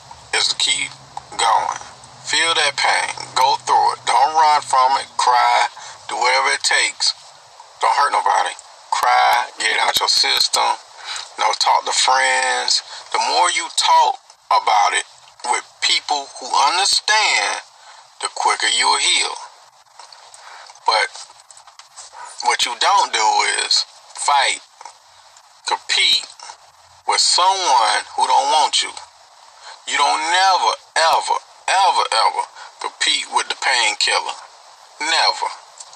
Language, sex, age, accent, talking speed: English, male, 30-49, American, 120 wpm